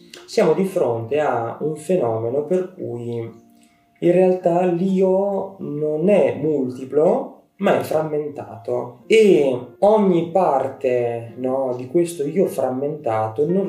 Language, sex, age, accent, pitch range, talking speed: Italian, male, 20-39, native, 120-175 Hz, 110 wpm